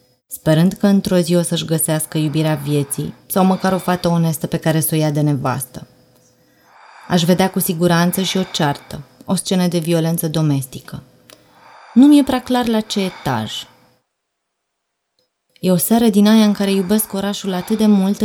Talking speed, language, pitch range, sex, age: 170 wpm, Romanian, 145-185 Hz, female, 20-39